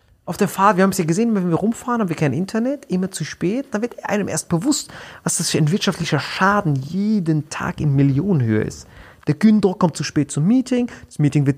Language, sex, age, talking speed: German, male, 30-49, 230 wpm